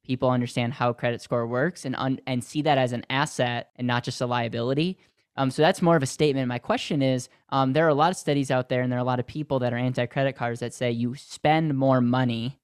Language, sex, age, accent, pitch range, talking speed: English, male, 10-29, American, 125-145 Hz, 260 wpm